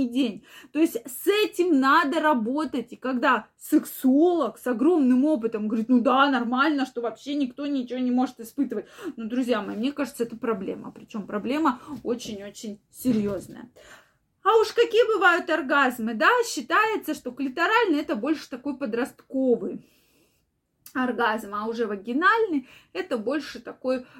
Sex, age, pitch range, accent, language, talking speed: female, 20-39, 230-305 Hz, native, Russian, 135 wpm